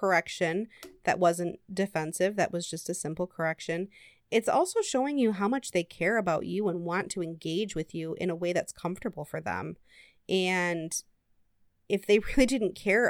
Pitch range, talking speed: 165-210 Hz, 180 wpm